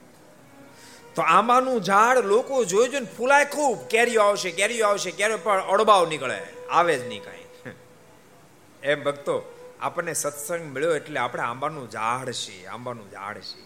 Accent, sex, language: native, male, Gujarati